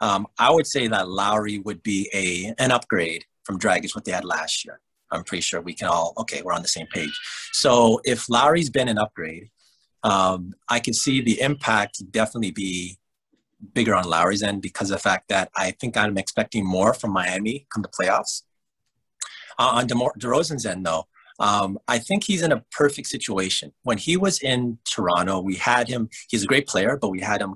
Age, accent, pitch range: 30-49, American, 95-115 Hz